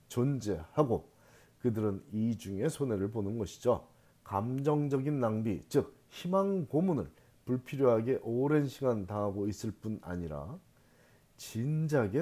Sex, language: male, Korean